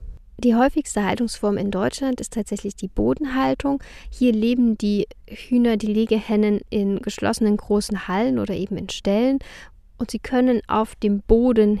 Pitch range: 200-235 Hz